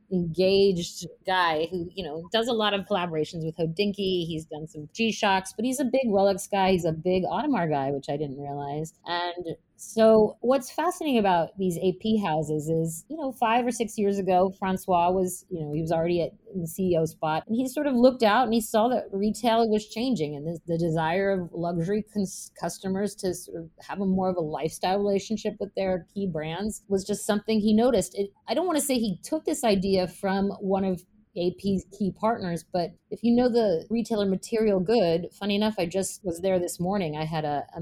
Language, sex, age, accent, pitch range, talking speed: English, female, 30-49, American, 170-210 Hz, 210 wpm